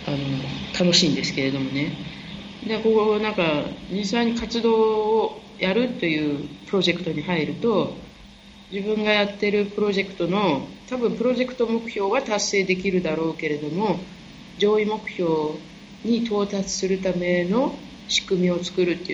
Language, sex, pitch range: Japanese, female, 160-210 Hz